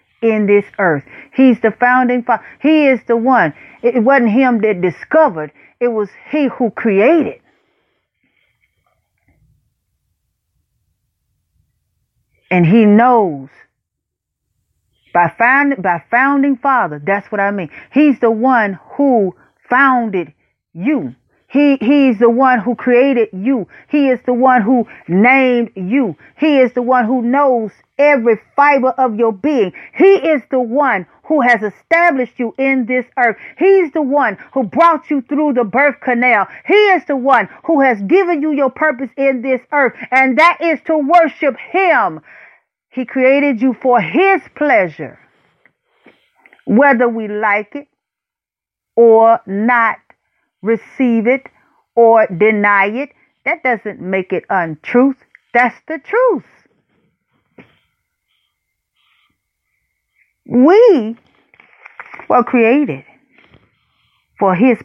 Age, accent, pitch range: 40-59, American, 220-280 Hz